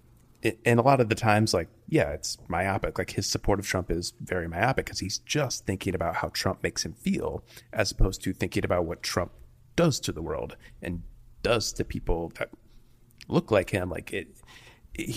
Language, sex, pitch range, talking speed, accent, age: English, male, 90-115 Hz, 200 wpm, American, 30-49